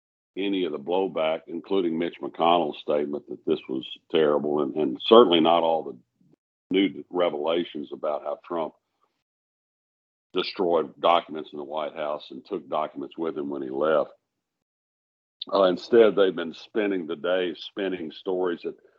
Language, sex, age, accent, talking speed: English, male, 60-79, American, 150 wpm